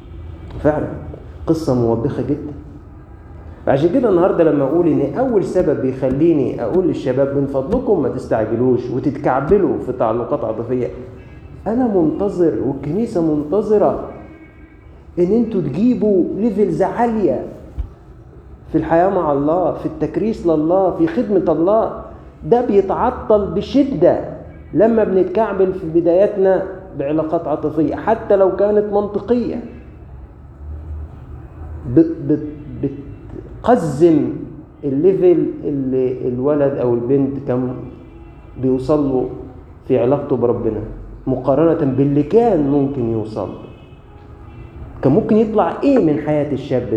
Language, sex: Arabic, male